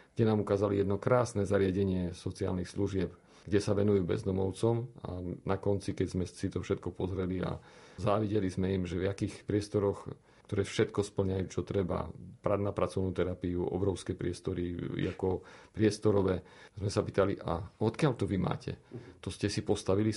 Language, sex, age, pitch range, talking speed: Slovak, male, 40-59, 95-110 Hz, 160 wpm